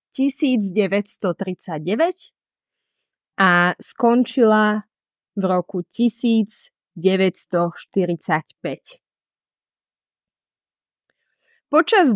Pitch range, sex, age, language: 185-255 Hz, female, 20-39, Slovak